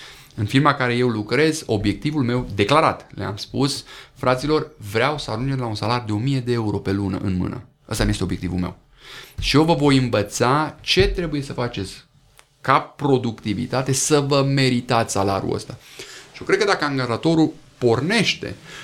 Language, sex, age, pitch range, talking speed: Romanian, male, 30-49, 105-145 Hz, 170 wpm